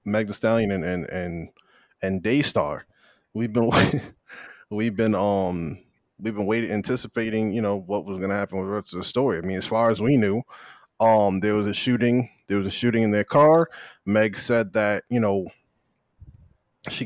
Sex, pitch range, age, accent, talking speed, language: male, 105-125 Hz, 20-39, American, 180 wpm, English